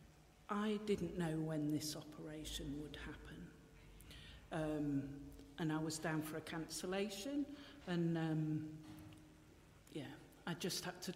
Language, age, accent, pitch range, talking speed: English, 60-79, British, 150-215 Hz, 125 wpm